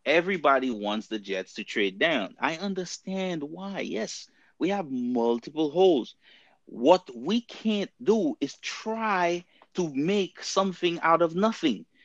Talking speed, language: 135 wpm, English